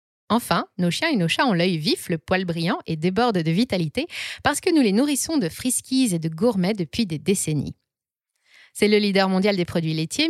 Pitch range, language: 170-230 Hz, French